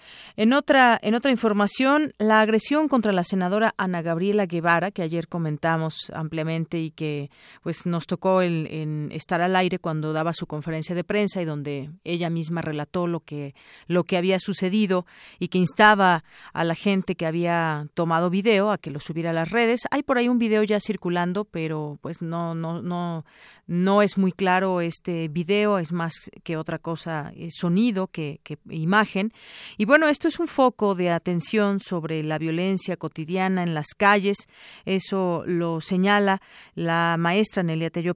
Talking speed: 175 wpm